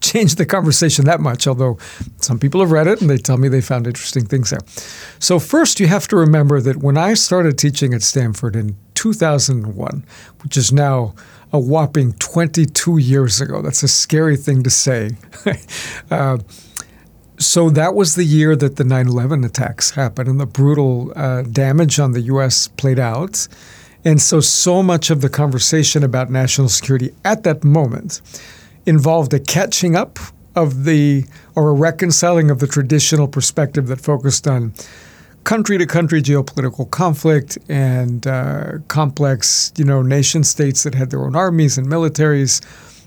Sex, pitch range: male, 130-160 Hz